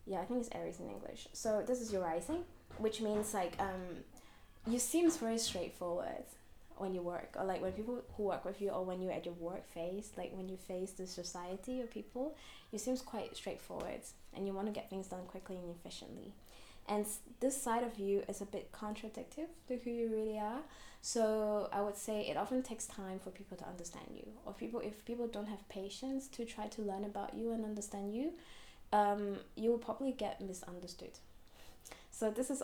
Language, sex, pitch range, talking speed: English, female, 190-225 Hz, 205 wpm